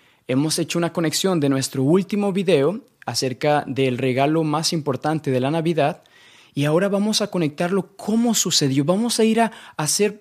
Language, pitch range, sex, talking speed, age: English, 130-175 Hz, male, 165 wpm, 20-39